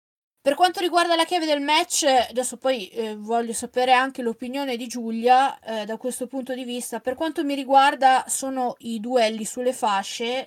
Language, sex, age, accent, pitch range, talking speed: Italian, female, 20-39, native, 225-265 Hz, 180 wpm